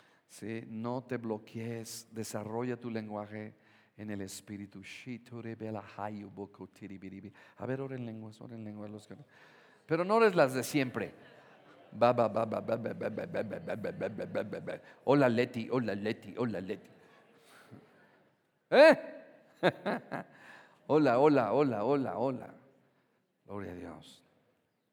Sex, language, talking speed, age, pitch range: male, Spanish, 85 wpm, 50-69, 105-125 Hz